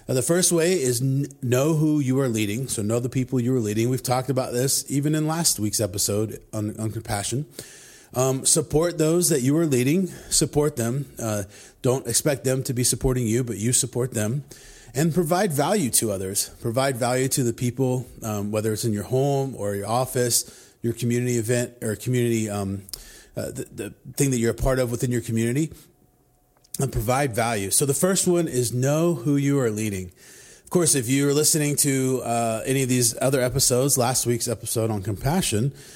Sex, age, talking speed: male, 30-49, 190 wpm